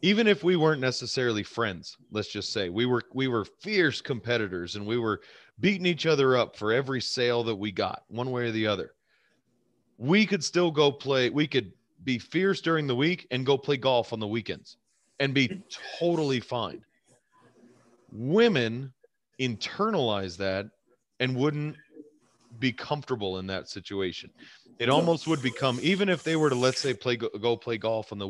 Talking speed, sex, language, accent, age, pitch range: 175 wpm, male, English, American, 30-49, 110-140 Hz